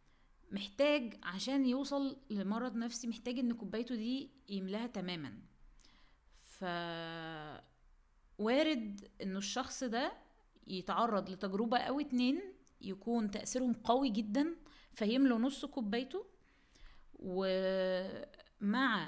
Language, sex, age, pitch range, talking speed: Arabic, female, 20-39, 180-245 Hz, 90 wpm